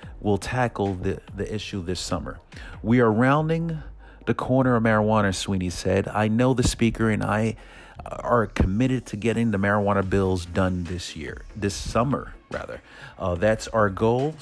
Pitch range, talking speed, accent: 95-115 Hz, 160 wpm, American